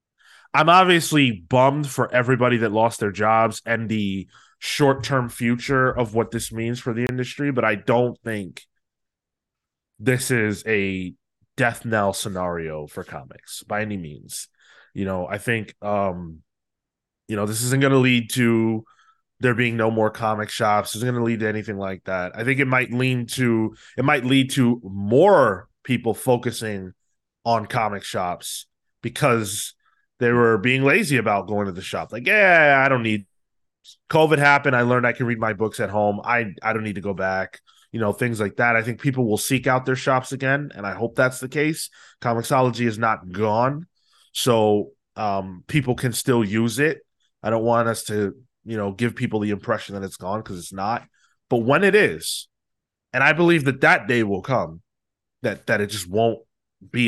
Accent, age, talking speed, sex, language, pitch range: American, 20-39, 185 wpm, male, English, 105-125 Hz